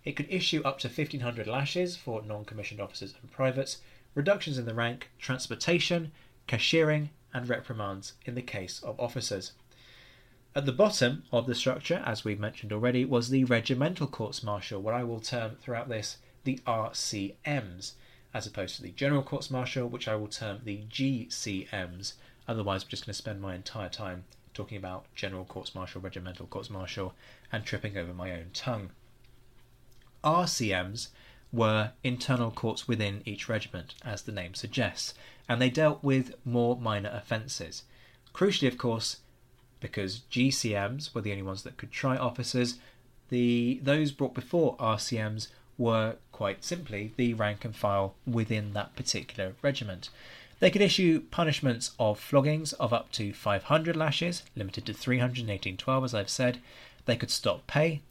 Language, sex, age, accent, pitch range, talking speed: English, male, 20-39, British, 105-130 Hz, 160 wpm